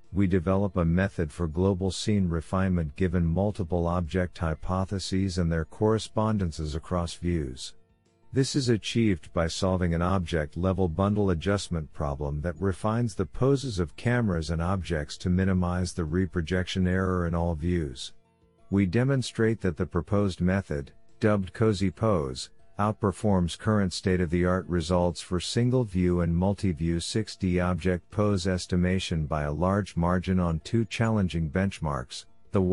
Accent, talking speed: American, 130 wpm